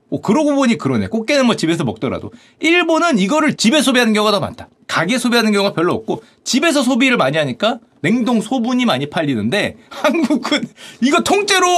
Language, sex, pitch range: Korean, male, 175-250 Hz